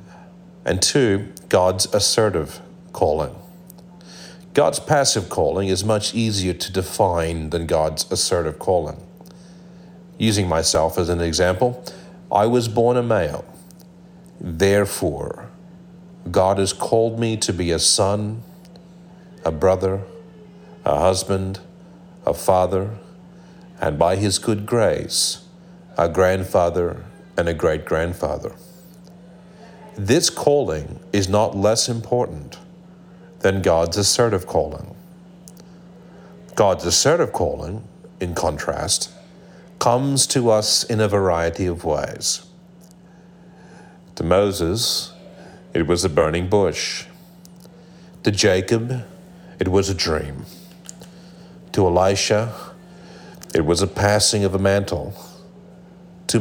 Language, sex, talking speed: English, male, 105 wpm